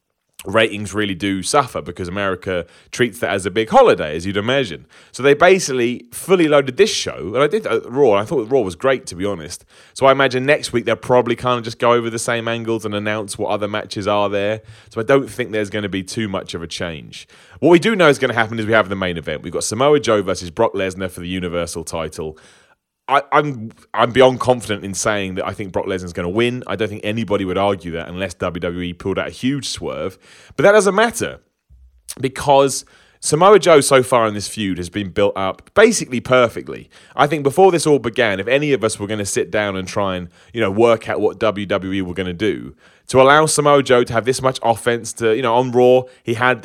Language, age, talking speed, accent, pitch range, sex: English, 30-49, 240 wpm, British, 100-135 Hz, male